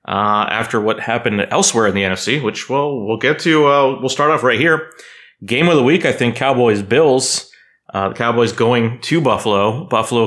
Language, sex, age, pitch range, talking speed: English, male, 30-49, 100-130 Hz, 200 wpm